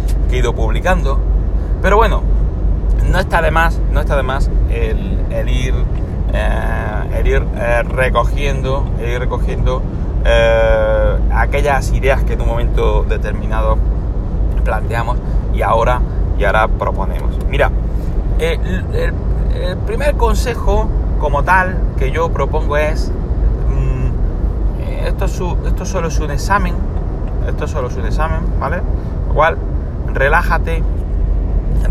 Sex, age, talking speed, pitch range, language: male, 30-49, 120 wpm, 75-105 Hz, Spanish